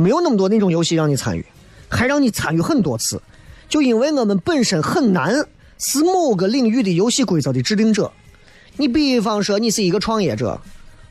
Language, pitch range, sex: Chinese, 155-225 Hz, male